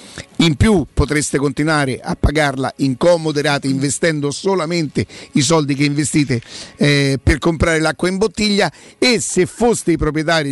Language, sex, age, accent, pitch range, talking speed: Italian, male, 50-69, native, 140-175 Hz, 145 wpm